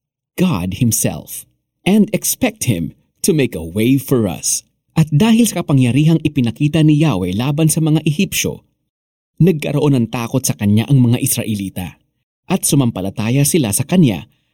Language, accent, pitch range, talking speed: Filipino, native, 105-160 Hz, 145 wpm